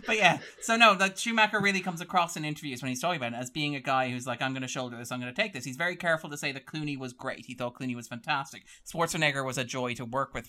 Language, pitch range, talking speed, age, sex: English, 120-150 Hz, 305 wpm, 30-49, male